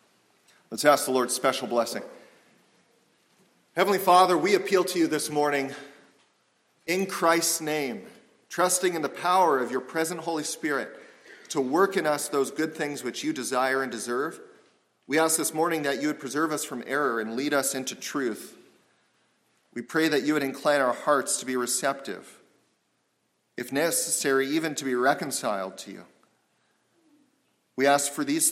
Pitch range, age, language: 130-165 Hz, 40-59, English